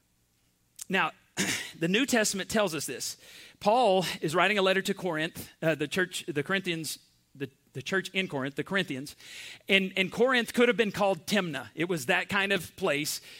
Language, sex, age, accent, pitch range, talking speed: English, male, 40-59, American, 170-210 Hz, 180 wpm